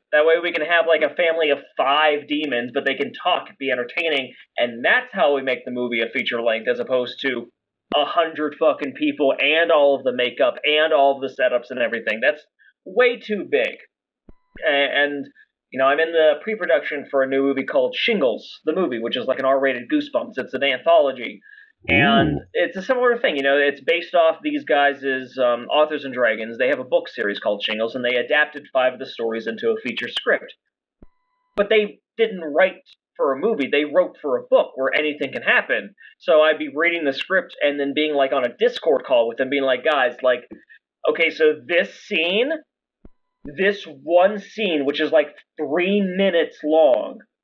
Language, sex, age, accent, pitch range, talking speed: English, male, 30-49, American, 135-200 Hz, 200 wpm